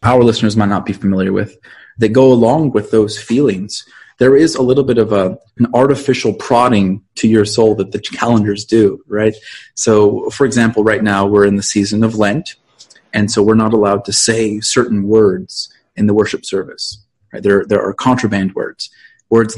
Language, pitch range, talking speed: English, 105-125 Hz, 190 wpm